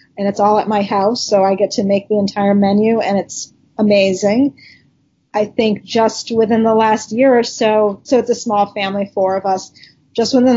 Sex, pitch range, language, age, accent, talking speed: female, 205-230 Hz, English, 30-49, American, 205 wpm